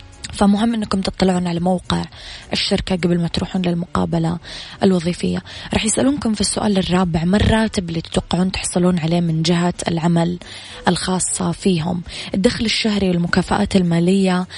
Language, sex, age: Arabic, female, 20-39